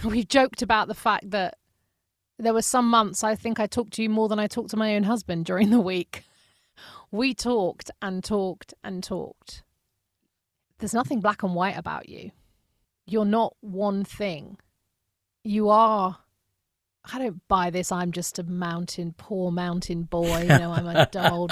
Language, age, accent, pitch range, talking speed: English, 40-59, British, 170-210 Hz, 175 wpm